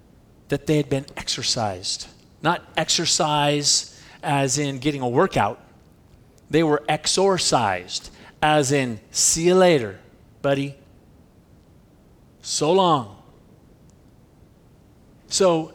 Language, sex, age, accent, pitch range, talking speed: English, male, 40-59, American, 145-230 Hz, 90 wpm